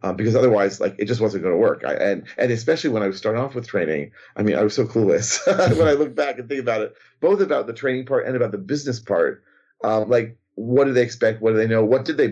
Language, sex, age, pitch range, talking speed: English, male, 40-59, 105-145 Hz, 290 wpm